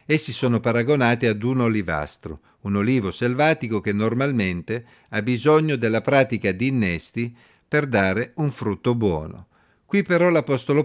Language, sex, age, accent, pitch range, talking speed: Italian, male, 50-69, native, 110-140 Hz, 140 wpm